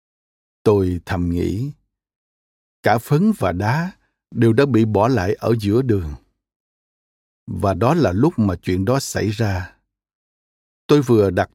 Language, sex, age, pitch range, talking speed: Vietnamese, male, 60-79, 95-130 Hz, 140 wpm